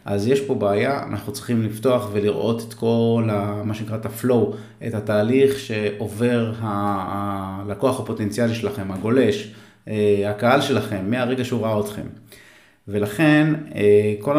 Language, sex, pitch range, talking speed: Hebrew, male, 105-130 Hz, 115 wpm